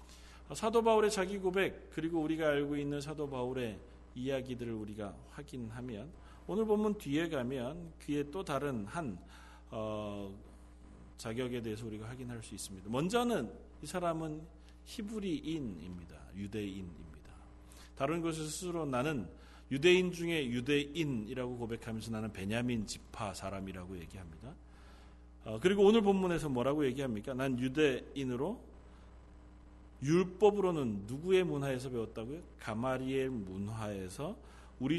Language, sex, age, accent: Korean, male, 40-59, native